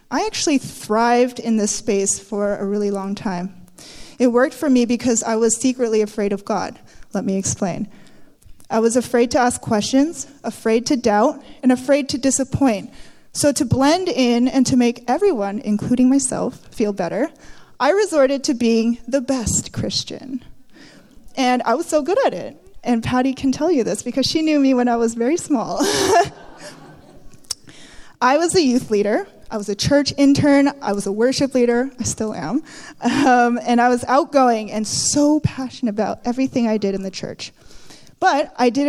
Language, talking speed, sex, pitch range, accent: English, 175 wpm, female, 215-270 Hz, American